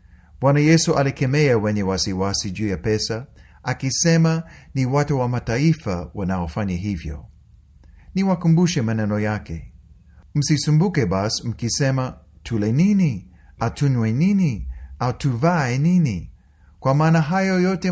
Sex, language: male, Swahili